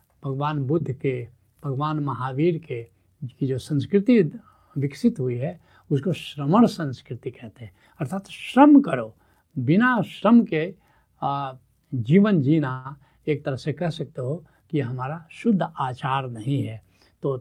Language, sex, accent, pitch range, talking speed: Hindi, male, native, 130-190 Hz, 135 wpm